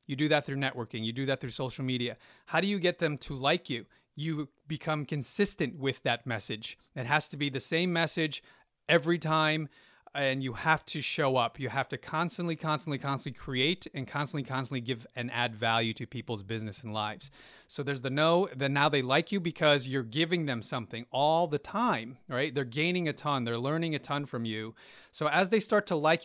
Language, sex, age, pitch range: English, male, 30-49, 130-160 Hz